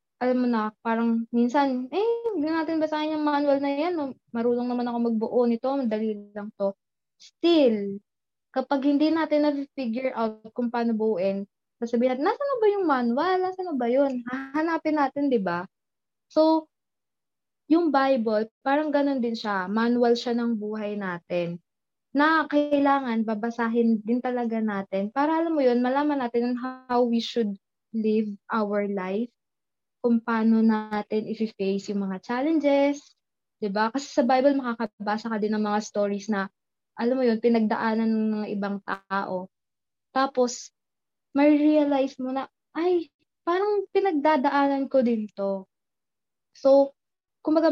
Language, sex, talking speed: Filipino, female, 145 wpm